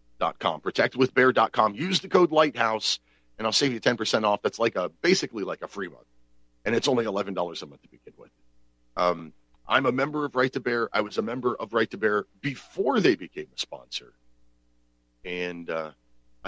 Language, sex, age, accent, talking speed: English, male, 40-59, American, 210 wpm